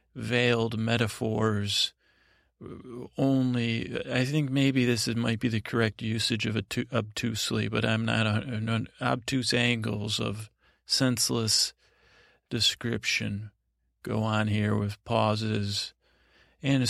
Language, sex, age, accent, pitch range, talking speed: English, male, 40-59, American, 110-125 Hz, 100 wpm